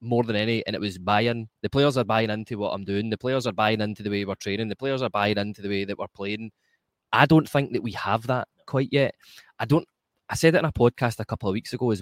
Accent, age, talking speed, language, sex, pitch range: British, 20-39, 285 wpm, English, male, 105-135 Hz